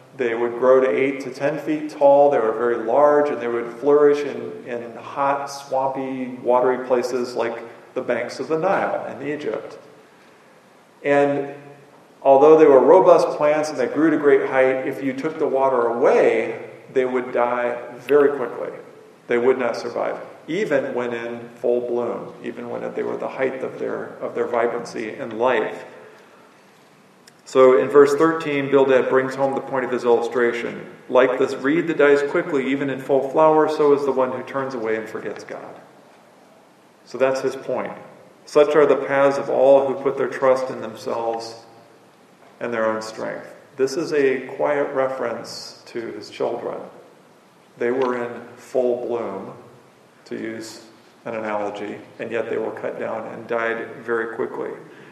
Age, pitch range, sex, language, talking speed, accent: 40-59, 120-145 Hz, male, English, 170 wpm, American